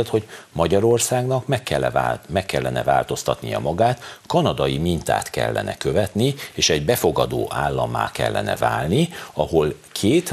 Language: Hungarian